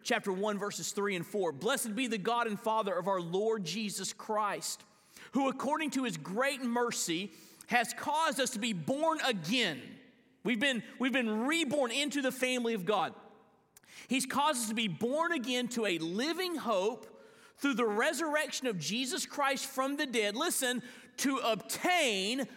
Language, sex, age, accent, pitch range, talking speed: English, male, 40-59, American, 200-265 Hz, 165 wpm